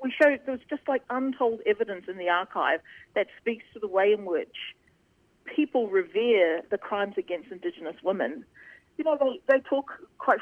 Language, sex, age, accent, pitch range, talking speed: English, female, 40-59, Australian, 190-270 Hz, 165 wpm